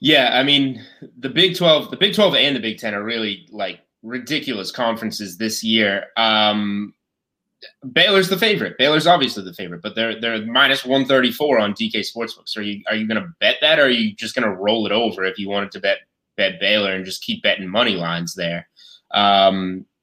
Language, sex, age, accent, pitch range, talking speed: English, male, 20-39, American, 100-130 Hz, 210 wpm